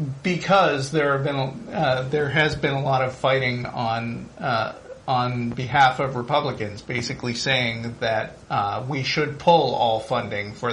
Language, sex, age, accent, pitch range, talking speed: English, male, 40-59, American, 130-160 Hz, 155 wpm